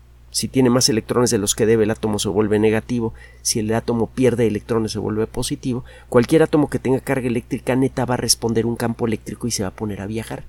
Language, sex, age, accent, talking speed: Spanish, male, 50-69, Mexican, 235 wpm